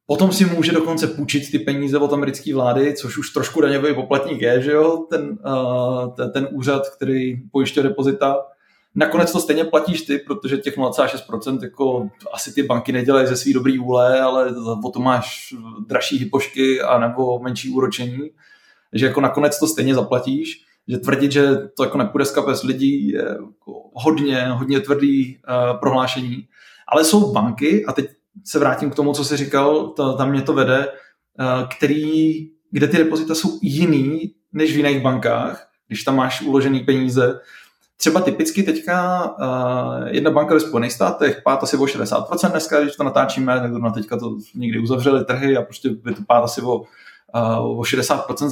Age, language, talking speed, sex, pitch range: 20-39, Slovak, 165 wpm, male, 125-155 Hz